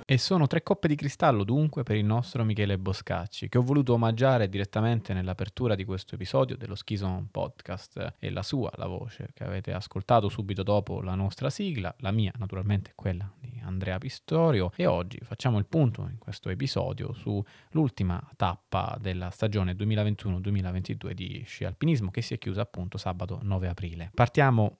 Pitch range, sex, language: 95-120 Hz, male, Italian